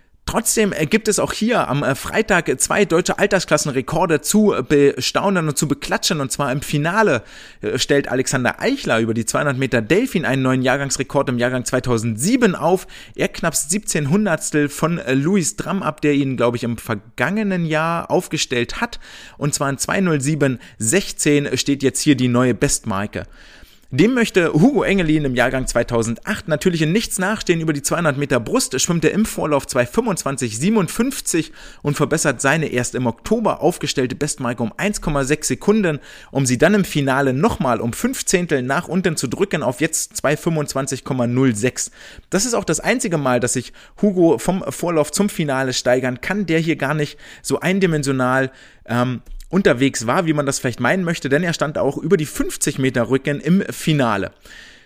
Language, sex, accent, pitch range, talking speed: German, male, German, 130-185 Hz, 165 wpm